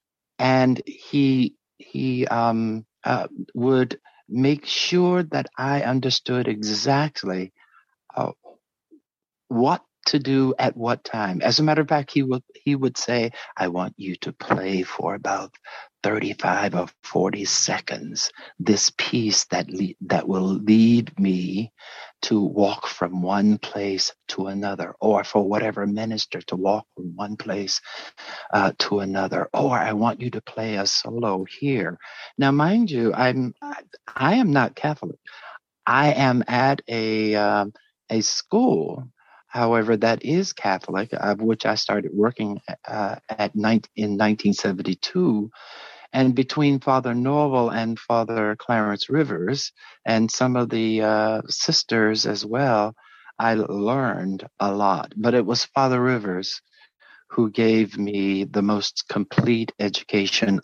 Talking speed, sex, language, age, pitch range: 135 wpm, male, English, 60-79, 100-130 Hz